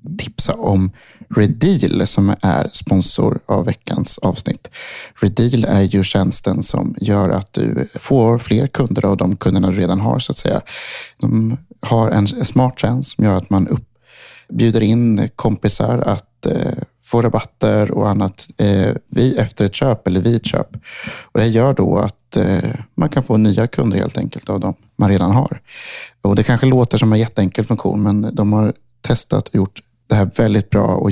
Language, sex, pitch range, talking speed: Swedish, male, 100-120 Hz, 175 wpm